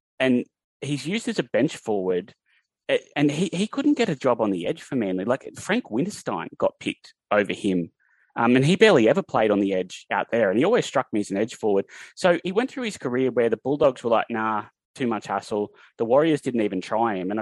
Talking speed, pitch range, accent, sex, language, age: 235 wpm, 105-155 Hz, Australian, male, English, 20-39